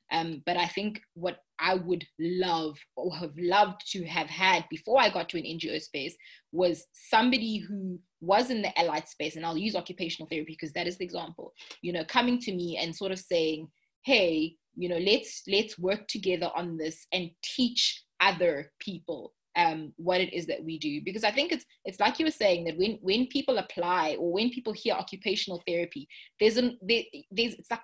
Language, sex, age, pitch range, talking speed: English, female, 20-39, 170-220 Hz, 205 wpm